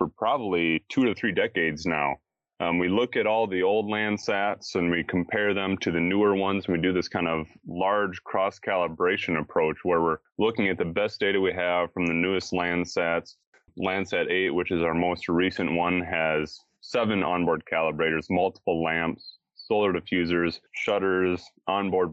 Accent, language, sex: American, English, male